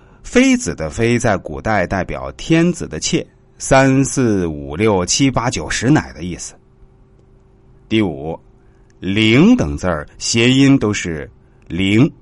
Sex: male